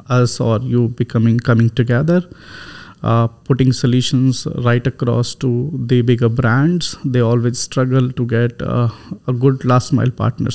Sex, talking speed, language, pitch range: male, 150 wpm, Arabic, 125-140 Hz